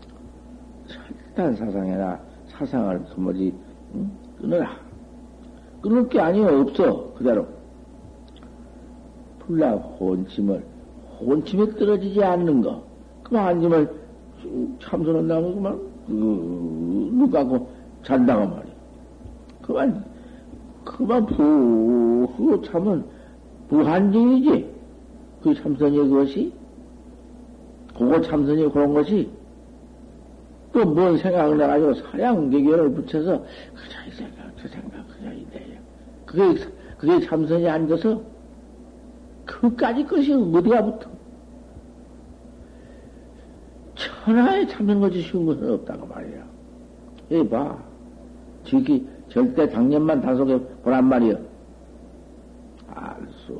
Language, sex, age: Korean, male, 60-79